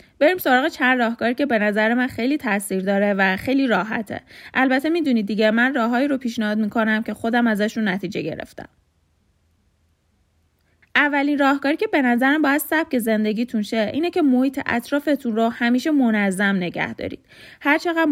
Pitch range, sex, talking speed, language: 215-275 Hz, female, 150 wpm, Persian